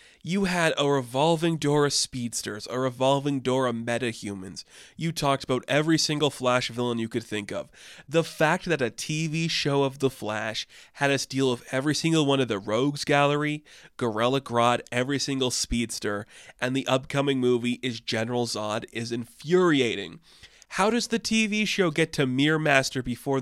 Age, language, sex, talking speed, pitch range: 20-39, English, male, 170 wpm, 120-165 Hz